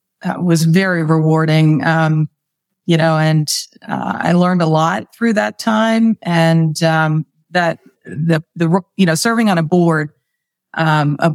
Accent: American